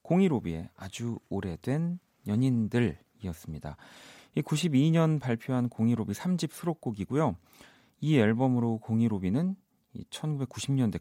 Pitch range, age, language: 90-130 Hz, 40-59, Korean